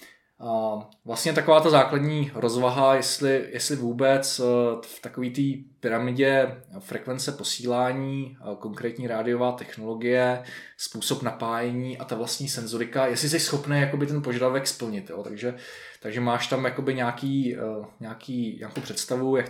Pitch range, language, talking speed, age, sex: 110-130 Hz, Czech, 130 wpm, 20-39, male